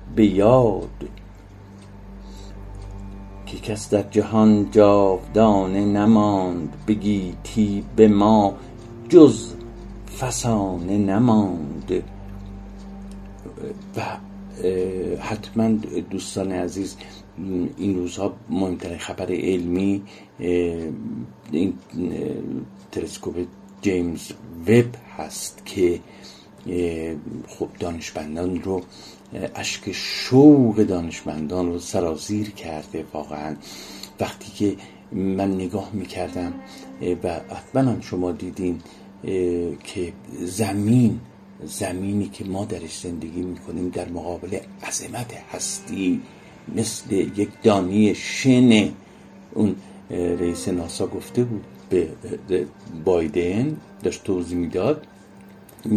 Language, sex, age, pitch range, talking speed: Persian, male, 50-69, 90-105 Hz, 80 wpm